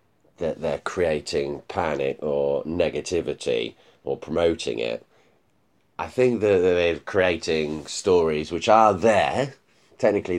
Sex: male